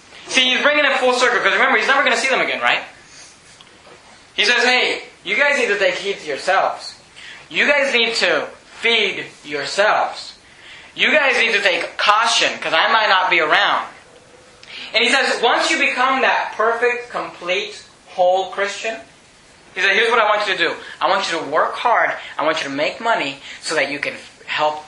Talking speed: 200 wpm